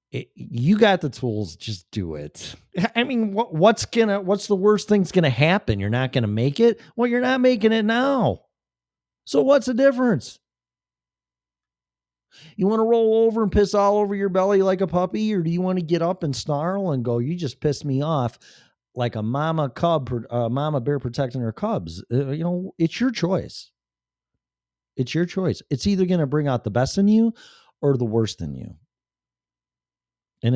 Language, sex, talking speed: English, male, 195 wpm